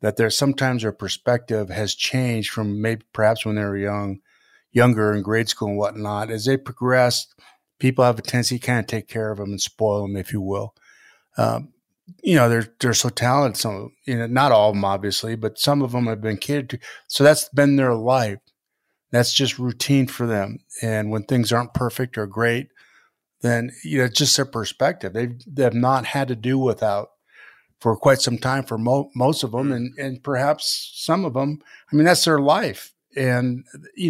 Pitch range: 110-135 Hz